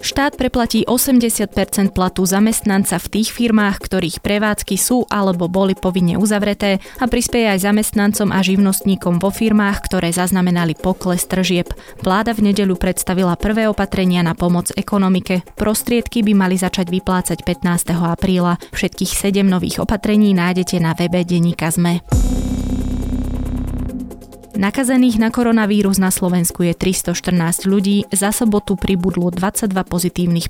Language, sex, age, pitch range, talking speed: Slovak, female, 20-39, 180-205 Hz, 125 wpm